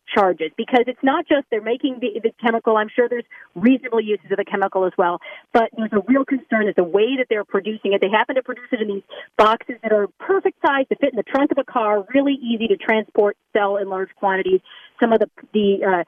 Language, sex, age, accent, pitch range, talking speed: English, female, 40-59, American, 200-265 Hz, 245 wpm